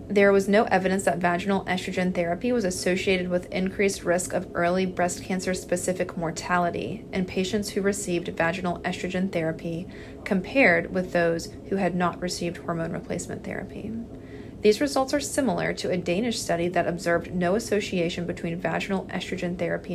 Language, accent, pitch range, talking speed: English, American, 175-195 Hz, 155 wpm